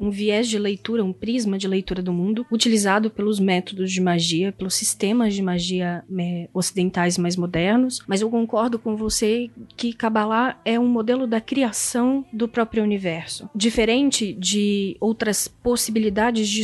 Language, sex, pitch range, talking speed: Portuguese, female, 200-230 Hz, 155 wpm